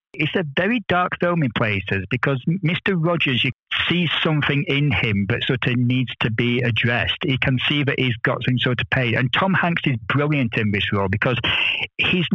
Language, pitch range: English, 125-155 Hz